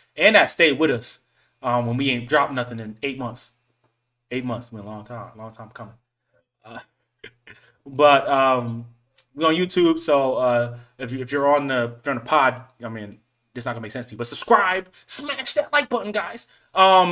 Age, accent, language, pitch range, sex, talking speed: 20-39, American, English, 120-145 Hz, male, 210 wpm